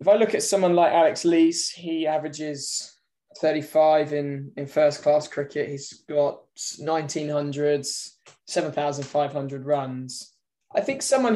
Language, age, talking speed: English, 10-29, 130 wpm